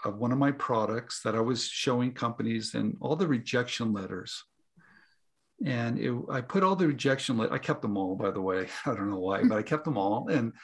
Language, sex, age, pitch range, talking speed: English, male, 50-69, 115-190 Hz, 215 wpm